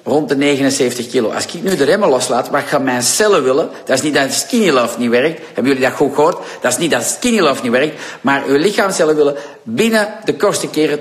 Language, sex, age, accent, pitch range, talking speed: Dutch, male, 50-69, Dutch, 120-165 Hz, 240 wpm